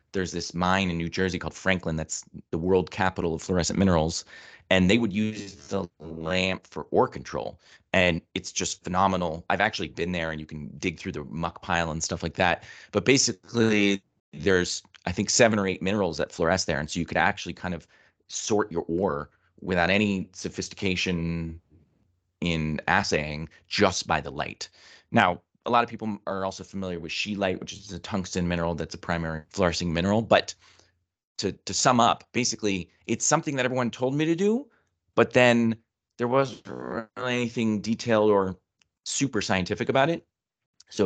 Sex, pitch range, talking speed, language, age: male, 85-105 Hz, 180 wpm, English, 30-49